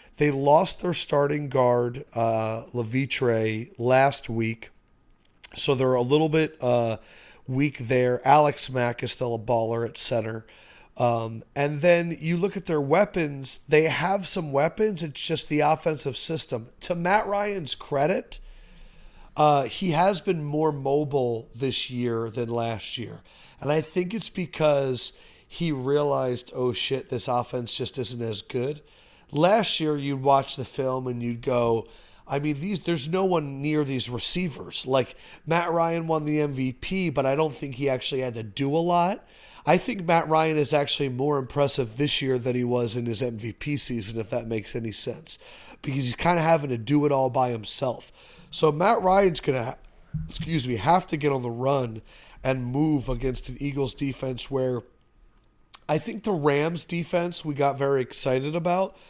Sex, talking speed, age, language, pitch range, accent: male, 175 wpm, 40-59, English, 125-160 Hz, American